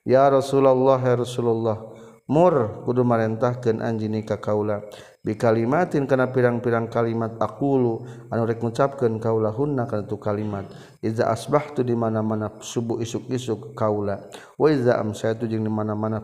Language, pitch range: Indonesian, 105-125 Hz